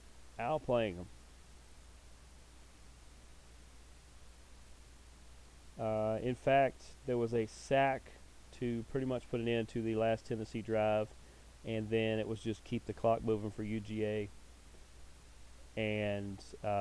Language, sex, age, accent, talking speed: English, male, 30-49, American, 120 wpm